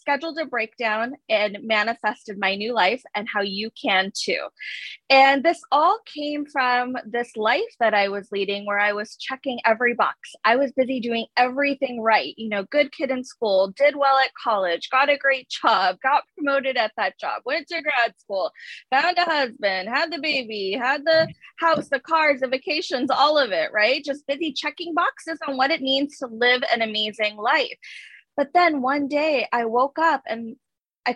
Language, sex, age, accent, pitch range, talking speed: English, female, 20-39, American, 230-310 Hz, 190 wpm